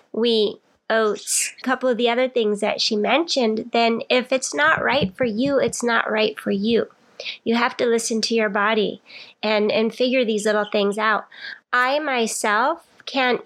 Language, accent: English, American